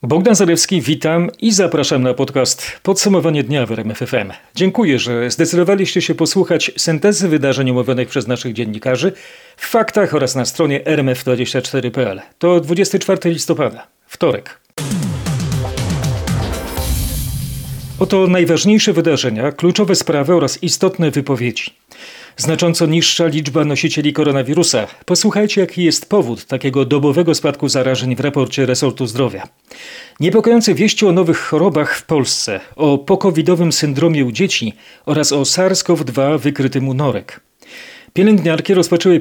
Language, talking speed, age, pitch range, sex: Polish, 120 wpm, 40-59, 130-175 Hz, male